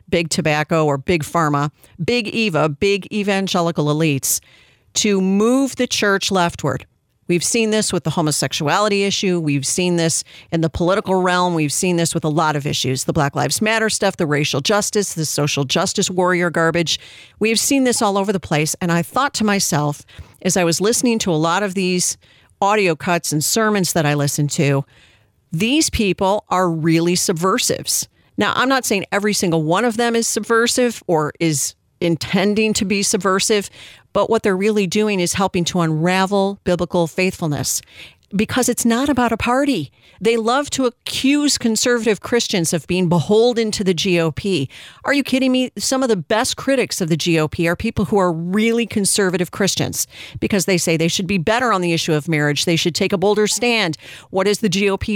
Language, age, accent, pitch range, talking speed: English, 40-59, American, 165-215 Hz, 185 wpm